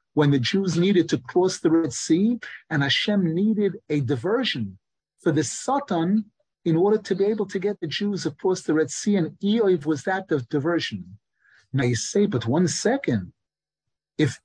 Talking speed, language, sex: 180 wpm, English, male